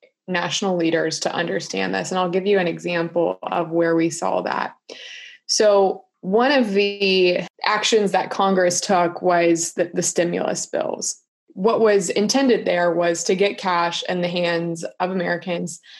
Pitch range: 170-200 Hz